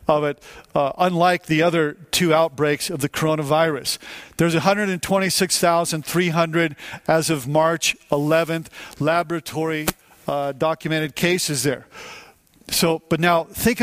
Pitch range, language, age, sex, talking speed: 155-185 Hz, English, 50-69, male, 150 wpm